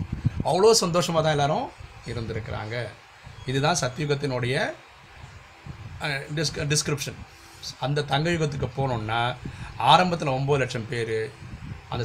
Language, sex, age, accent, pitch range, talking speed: Tamil, male, 30-49, native, 115-135 Hz, 85 wpm